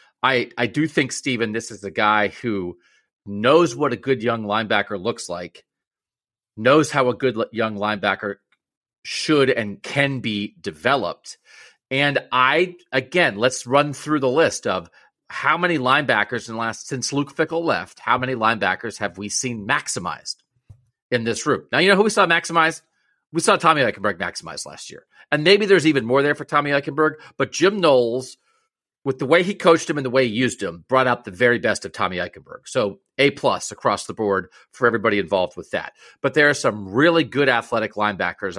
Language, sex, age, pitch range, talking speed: English, male, 40-59, 115-150 Hz, 190 wpm